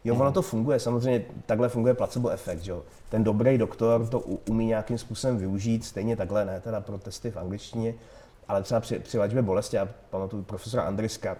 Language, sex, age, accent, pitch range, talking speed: Czech, male, 30-49, native, 105-130 Hz, 185 wpm